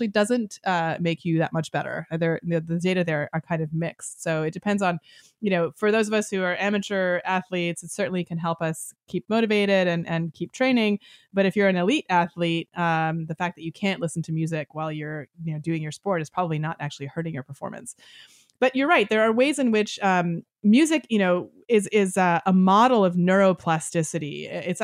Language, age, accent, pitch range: English, 30-49, American, 160-200 Hz